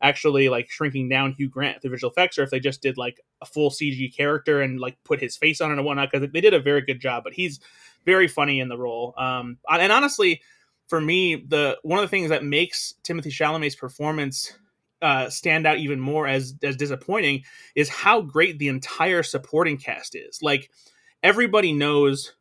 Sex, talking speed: male, 205 wpm